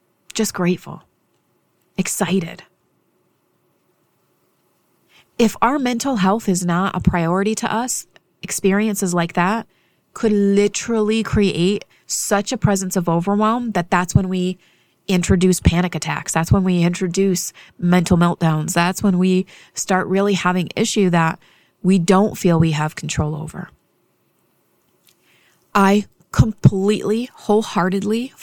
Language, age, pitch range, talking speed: English, 30-49, 170-200 Hz, 115 wpm